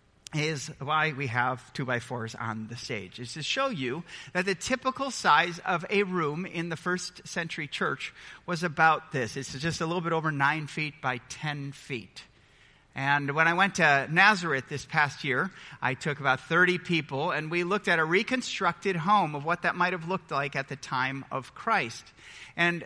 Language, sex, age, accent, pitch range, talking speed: English, male, 40-59, American, 130-175 Hz, 195 wpm